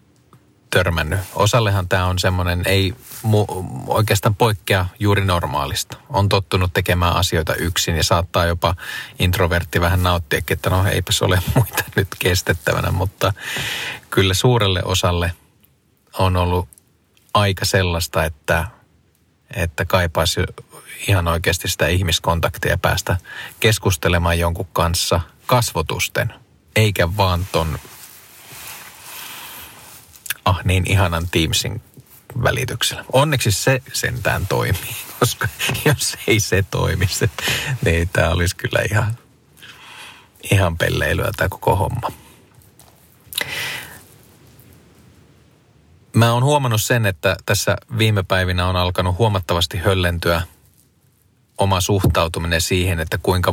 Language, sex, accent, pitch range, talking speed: Finnish, male, native, 90-105 Hz, 105 wpm